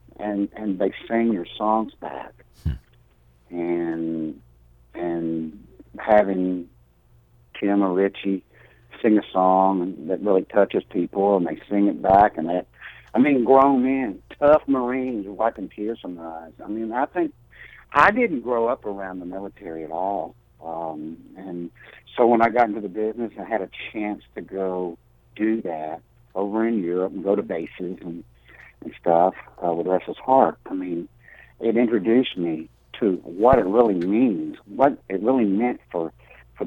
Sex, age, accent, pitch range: male, 60-79, American, 85-115 Hz